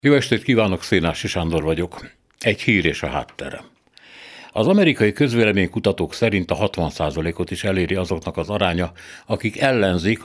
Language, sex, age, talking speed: Hungarian, male, 60-79, 145 wpm